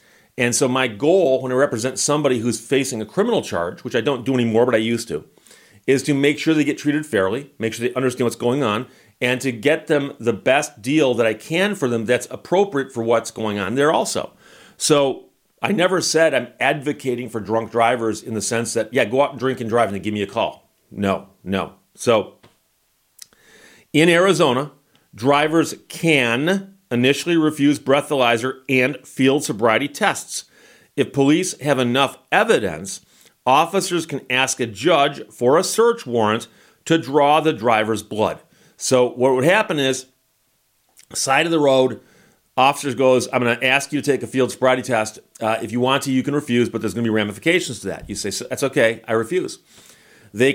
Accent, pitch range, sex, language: American, 115-145 Hz, male, English